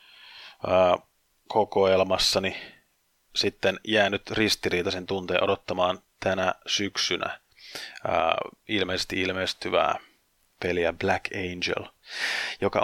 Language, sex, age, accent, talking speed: Finnish, male, 30-49, native, 65 wpm